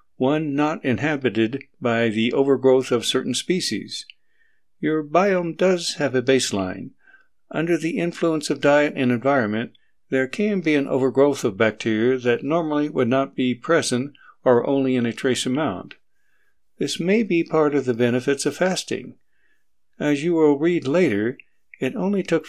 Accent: American